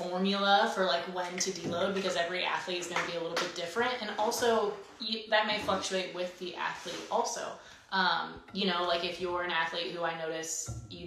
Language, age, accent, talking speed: English, 20-39, American, 205 wpm